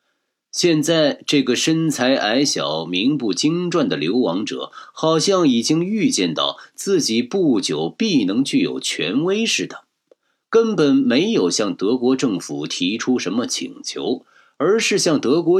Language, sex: Chinese, male